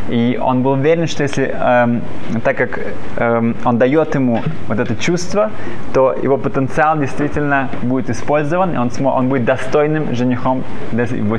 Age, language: 20-39, Russian